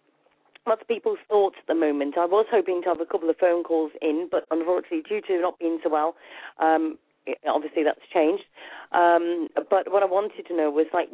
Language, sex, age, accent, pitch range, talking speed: English, female, 40-59, British, 165-190 Hz, 205 wpm